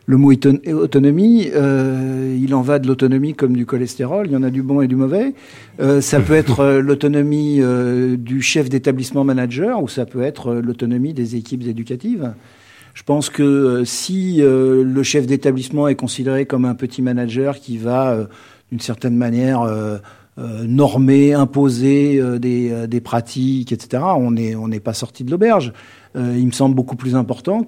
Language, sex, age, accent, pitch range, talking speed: French, male, 50-69, French, 125-145 Hz, 195 wpm